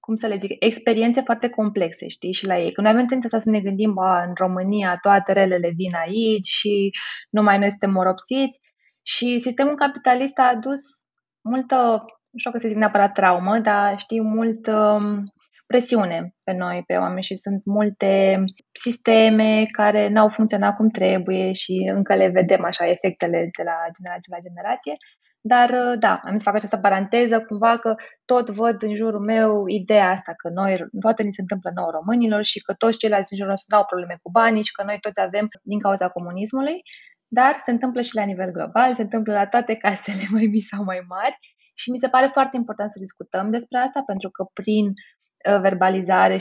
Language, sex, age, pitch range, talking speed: Romanian, female, 20-39, 190-230 Hz, 185 wpm